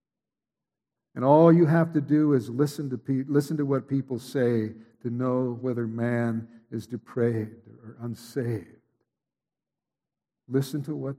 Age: 60-79